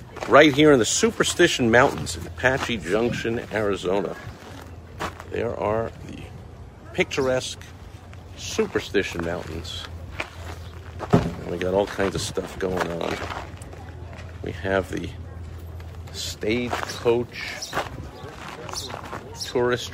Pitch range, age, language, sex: 85-115 Hz, 50-69, English, male